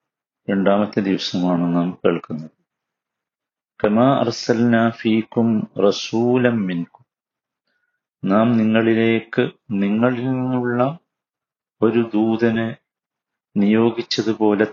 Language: Malayalam